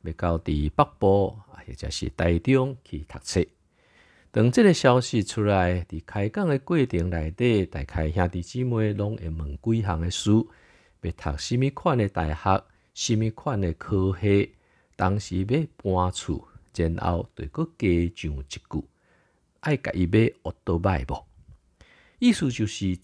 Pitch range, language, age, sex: 80-110 Hz, Chinese, 50-69, male